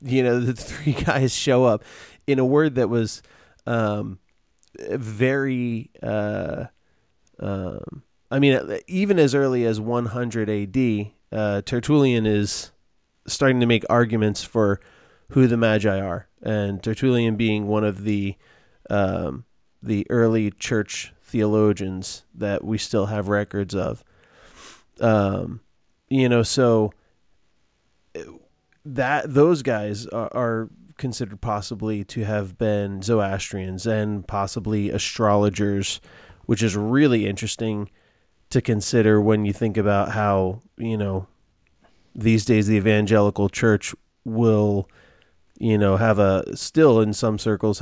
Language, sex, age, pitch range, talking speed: English, male, 30-49, 100-120 Hz, 125 wpm